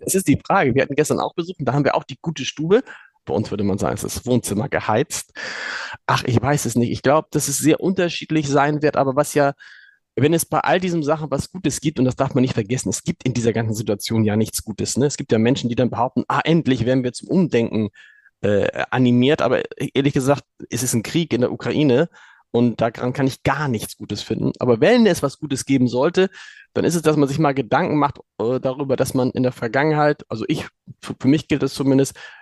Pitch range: 125-155 Hz